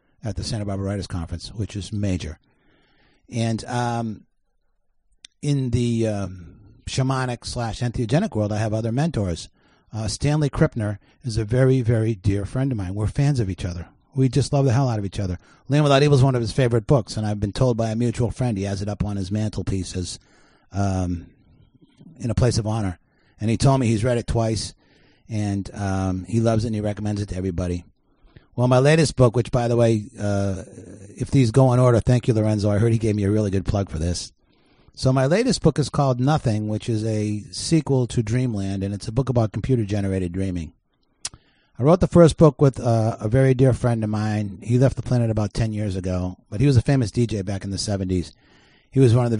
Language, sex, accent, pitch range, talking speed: English, male, American, 100-125 Hz, 220 wpm